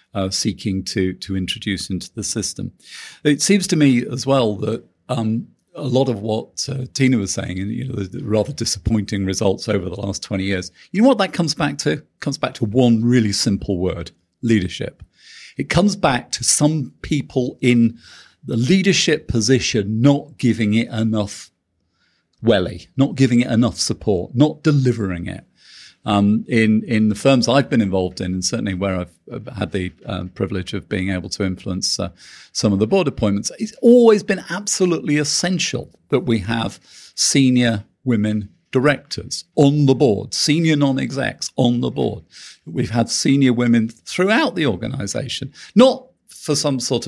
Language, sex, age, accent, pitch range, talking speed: English, male, 40-59, British, 100-140 Hz, 170 wpm